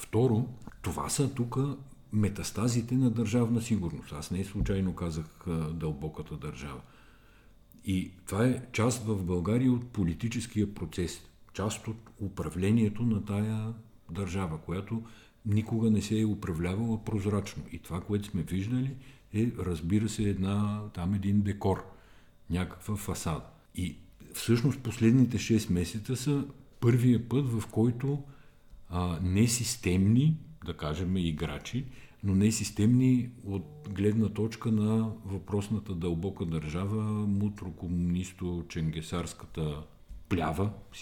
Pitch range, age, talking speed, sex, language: 90-115 Hz, 50-69, 115 wpm, male, Bulgarian